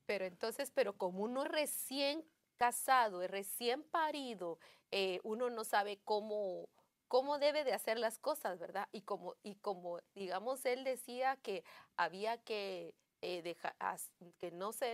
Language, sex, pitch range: English, female, 190-260 Hz